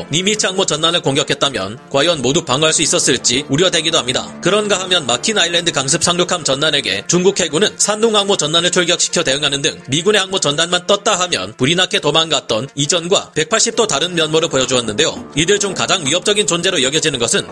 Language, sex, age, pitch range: Korean, male, 30-49, 150-195 Hz